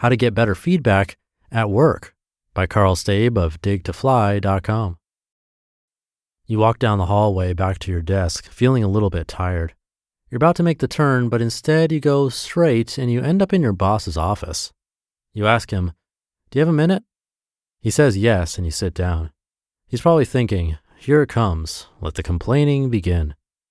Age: 30-49